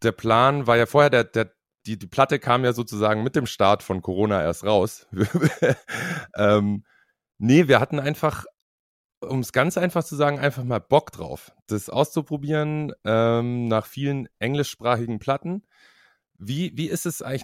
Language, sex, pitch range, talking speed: German, male, 105-135 Hz, 160 wpm